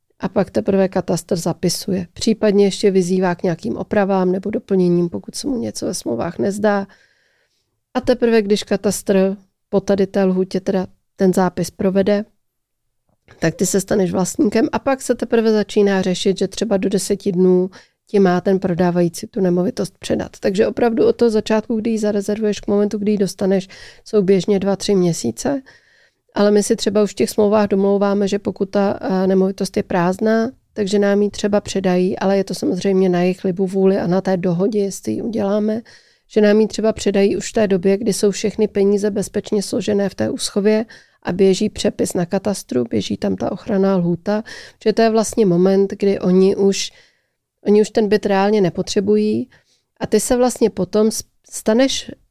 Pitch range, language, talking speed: 190-215 Hz, Czech, 180 wpm